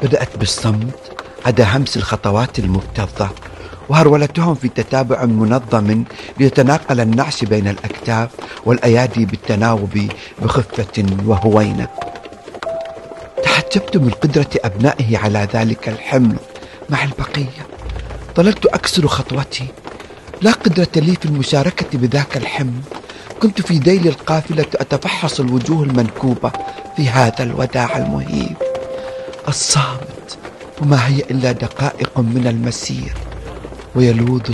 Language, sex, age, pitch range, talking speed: Arabic, male, 50-69, 115-145 Hz, 95 wpm